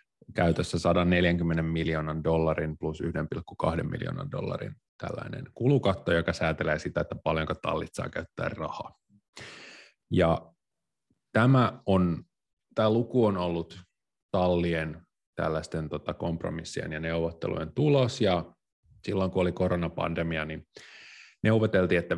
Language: Finnish